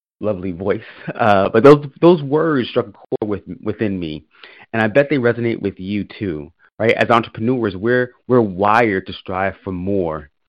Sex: male